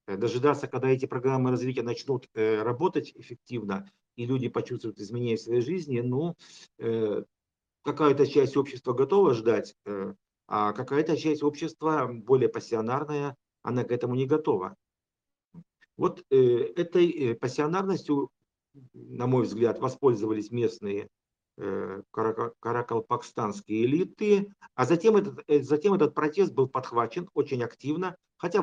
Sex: male